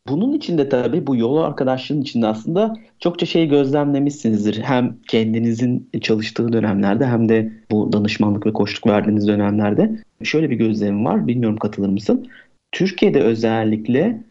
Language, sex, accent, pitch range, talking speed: Turkish, male, native, 110-155 Hz, 135 wpm